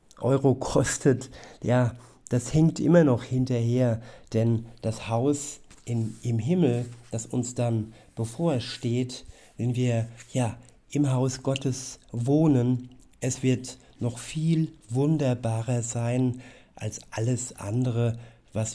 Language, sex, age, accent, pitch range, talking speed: German, male, 50-69, German, 115-130 Hz, 110 wpm